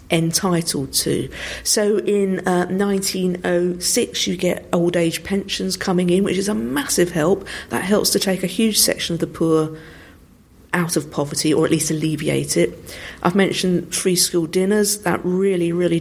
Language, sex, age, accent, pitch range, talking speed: English, female, 50-69, British, 160-210 Hz, 160 wpm